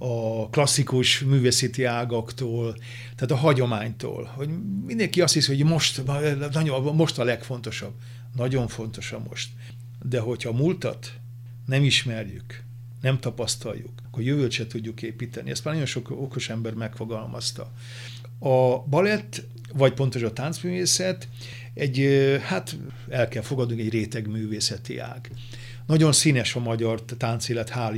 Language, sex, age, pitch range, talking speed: Hungarian, male, 50-69, 120-135 Hz, 135 wpm